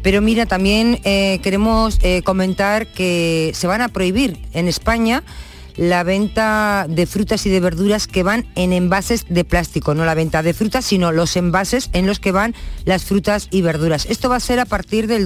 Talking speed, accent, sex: 195 wpm, Spanish, female